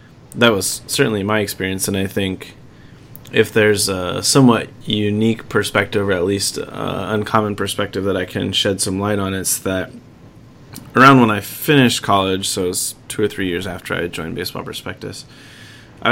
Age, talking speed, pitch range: 20-39, 175 wpm, 100-125 Hz